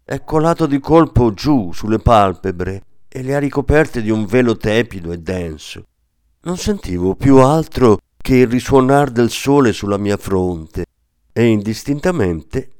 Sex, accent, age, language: male, native, 50-69, Italian